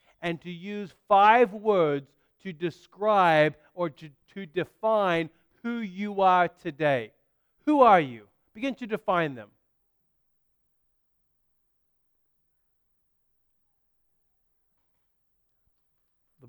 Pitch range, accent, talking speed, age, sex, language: 155-200 Hz, American, 85 wpm, 40-59, male, English